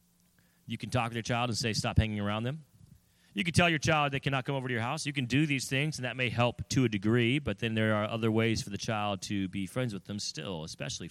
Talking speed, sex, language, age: 280 wpm, male, English, 30-49